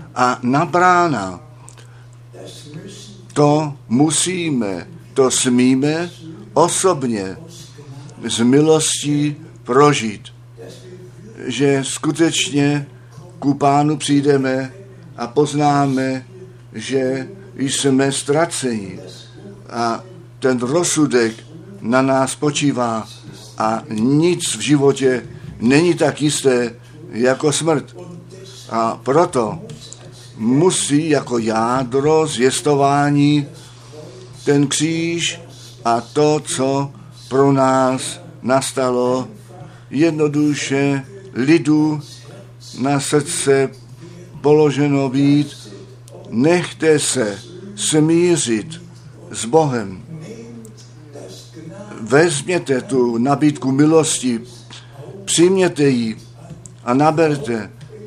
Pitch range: 120-150 Hz